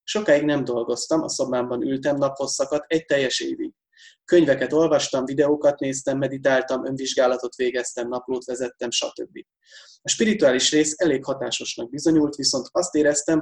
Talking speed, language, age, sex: 130 wpm, Hungarian, 20-39, male